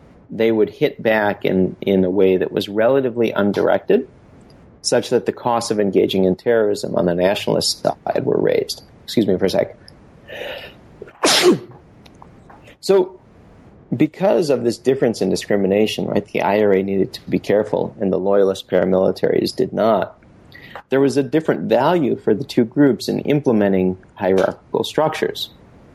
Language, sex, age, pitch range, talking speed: English, male, 40-59, 100-135 Hz, 150 wpm